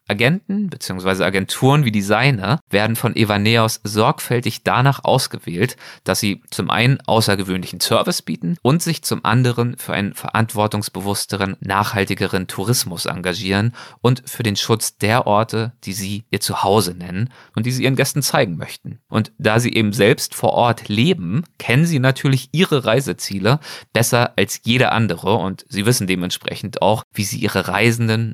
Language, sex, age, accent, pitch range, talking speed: German, male, 30-49, German, 100-125 Hz, 150 wpm